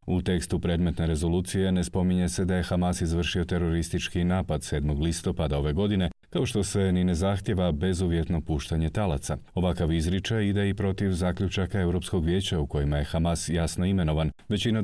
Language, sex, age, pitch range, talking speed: Croatian, male, 40-59, 80-95 Hz, 165 wpm